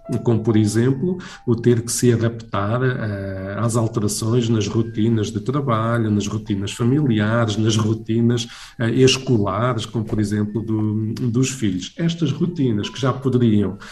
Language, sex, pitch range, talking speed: Portuguese, male, 110-130 Hz, 130 wpm